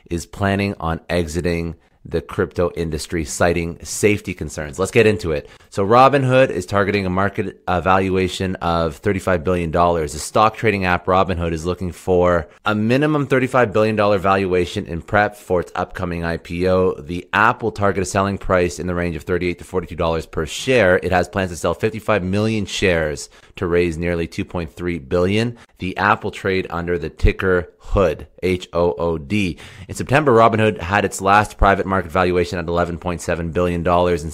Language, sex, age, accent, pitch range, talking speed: English, male, 30-49, American, 85-105 Hz, 165 wpm